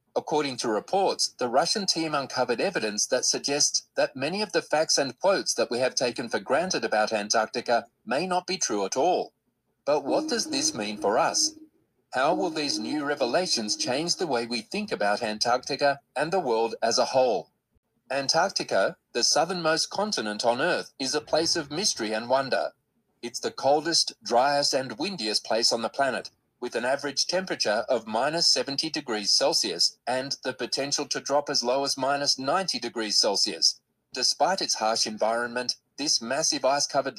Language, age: English, 30-49